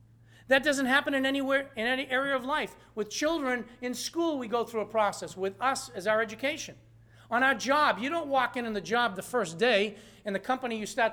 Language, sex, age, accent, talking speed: English, male, 40-59, American, 225 wpm